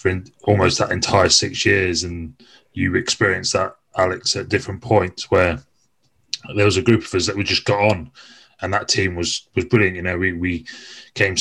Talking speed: 195 wpm